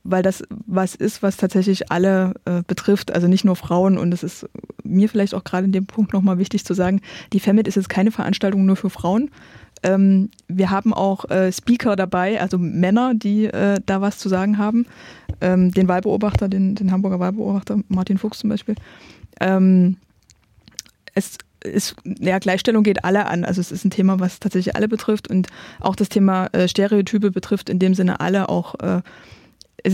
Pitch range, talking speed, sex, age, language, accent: 185-210 Hz, 190 wpm, female, 20-39, German, German